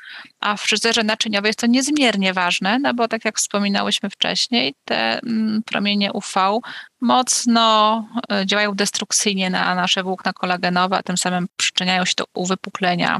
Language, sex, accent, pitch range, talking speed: Polish, female, native, 180-225 Hz, 140 wpm